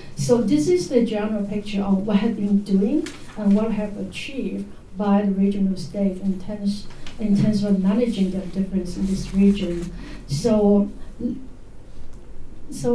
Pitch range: 195-220 Hz